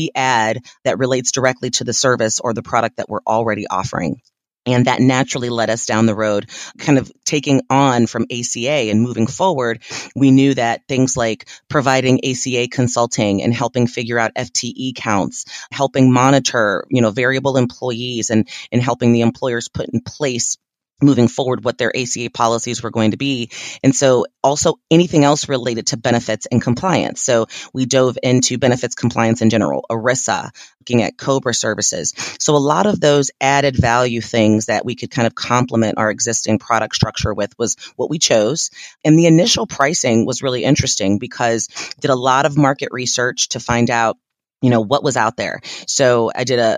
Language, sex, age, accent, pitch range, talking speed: English, female, 30-49, American, 115-130 Hz, 180 wpm